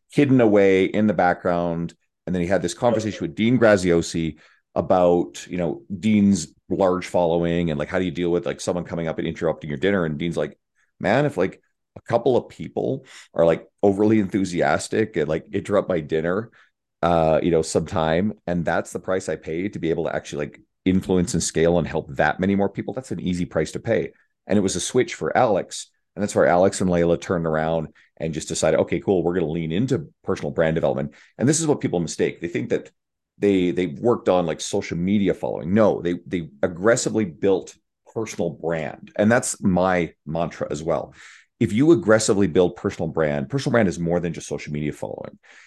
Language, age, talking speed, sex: English, 40-59, 210 wpm, male